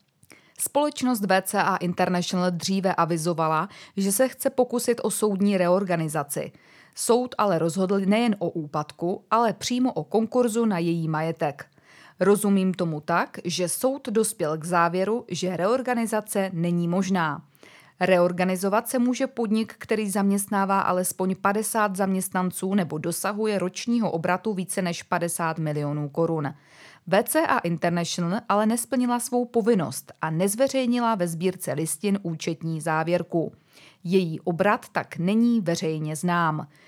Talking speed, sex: 120 wpm, female